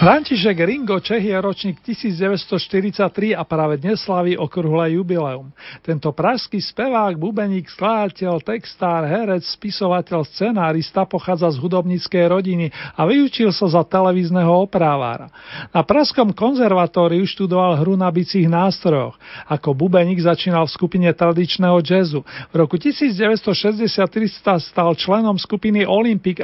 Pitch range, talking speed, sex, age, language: 160-195 Hz, 125 wpm, male, 40-59, Slovak